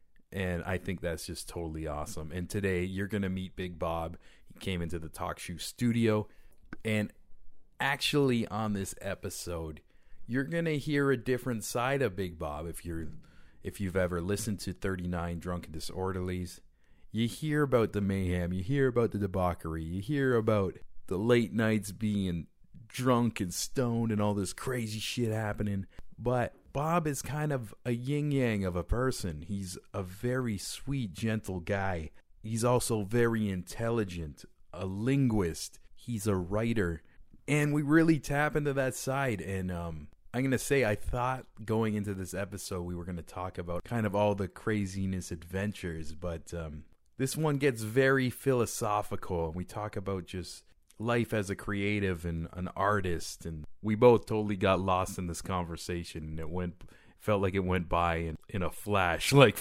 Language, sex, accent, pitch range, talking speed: English, male, American, 90-115 Hz, 170 wpm